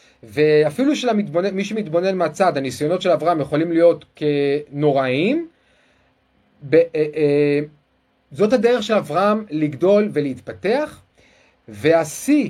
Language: Hebrew